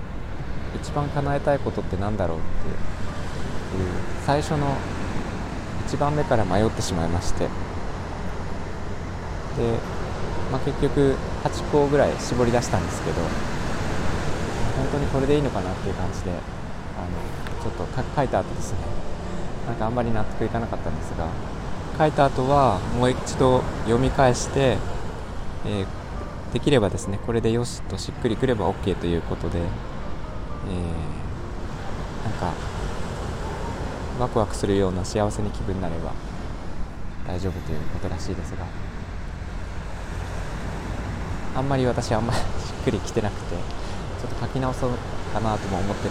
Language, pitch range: Japanese, 90-115 Hz